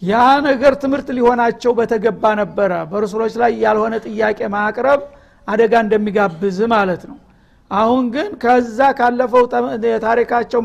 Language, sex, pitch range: Amharic, male, 220-245 Hz